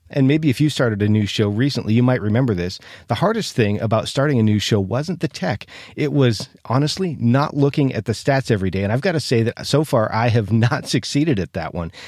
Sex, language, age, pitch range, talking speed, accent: male, English, 40-59, 110-140 Hz, 245 wpm, American